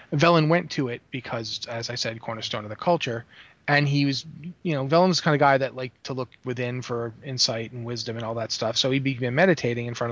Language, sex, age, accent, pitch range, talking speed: English, male, 30-49, American, 120-150 Hz, 245 wpm